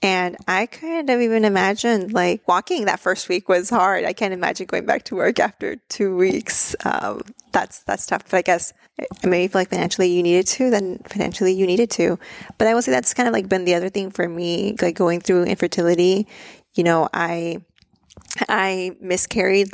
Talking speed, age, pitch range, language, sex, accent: 195 wpm, 20-39, 175-210 Hz, English, female, American